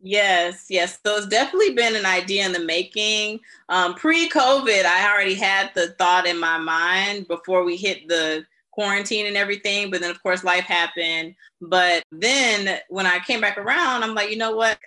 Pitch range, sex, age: 175-205 Hz, female, 20-39